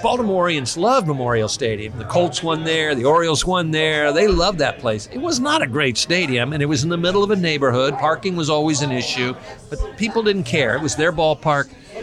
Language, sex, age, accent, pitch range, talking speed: English, male, 50-69, American, 125-155 Hz, 220 wpm